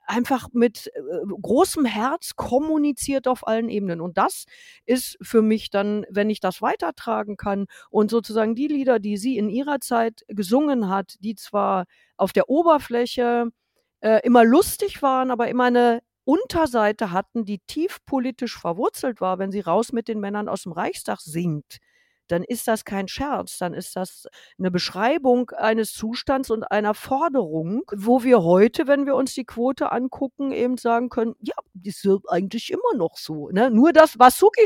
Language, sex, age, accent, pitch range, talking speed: German, female, 50-69, German, 210-265 Hz, 170 wpm